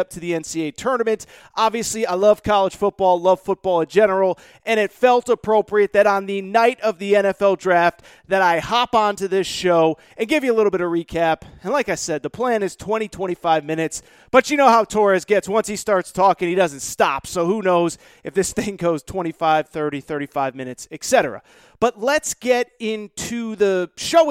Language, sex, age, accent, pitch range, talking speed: English, male, 30-49, American, 185-250 Hz, 200 wpm